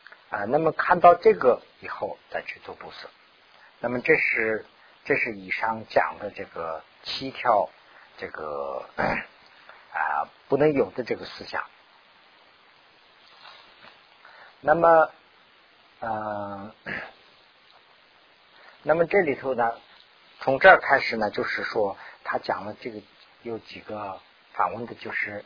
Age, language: 50-69, Chinese